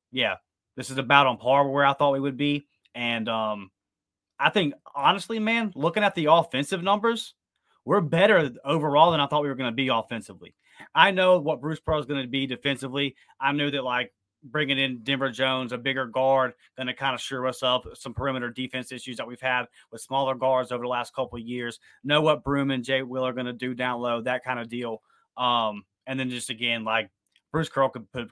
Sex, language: male, English